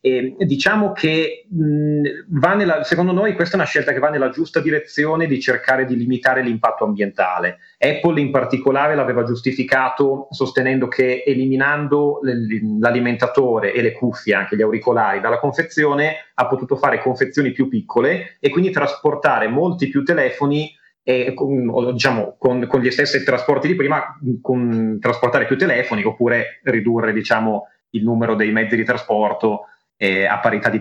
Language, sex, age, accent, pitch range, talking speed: Italian, male, 30-49, native, 120-145 Hz, 155 wpm